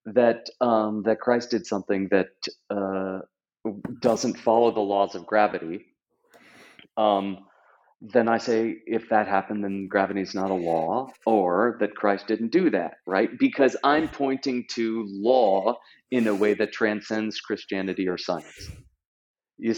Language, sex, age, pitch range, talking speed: English, male, 30-49, 100-120 Hz, 145 wpm